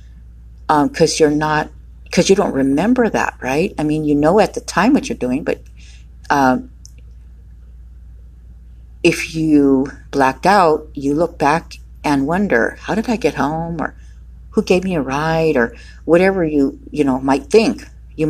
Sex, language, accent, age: female, English, American, 50-69